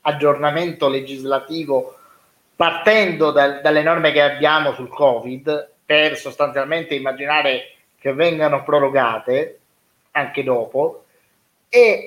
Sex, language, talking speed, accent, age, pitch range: male, Italian, 95 wpm, native, 30-49, 140-200 Hz